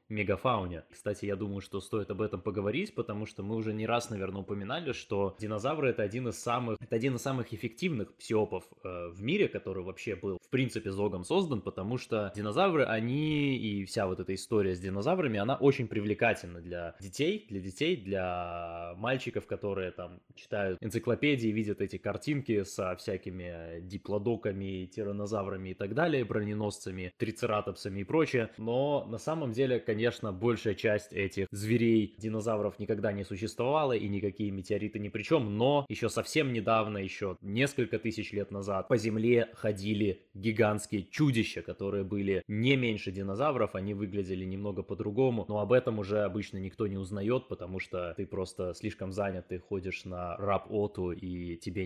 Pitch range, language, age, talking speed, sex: 95-115 Hz, Russian, 20-39, 160 wpm, male